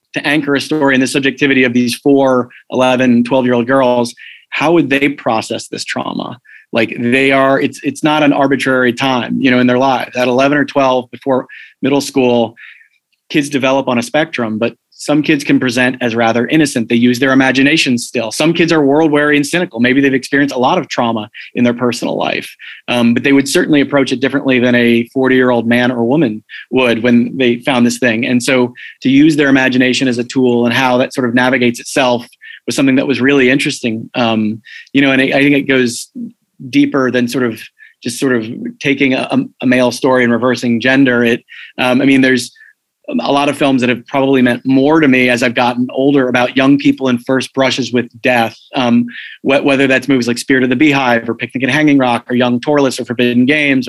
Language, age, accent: English, 30-49, American